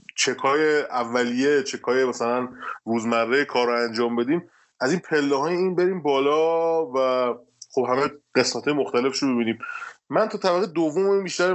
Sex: male